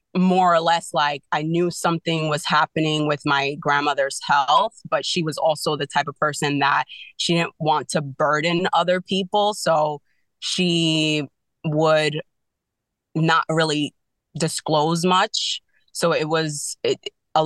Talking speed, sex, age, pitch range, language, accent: 140 wpm, female, 20-39, 150-165 Hz, English, American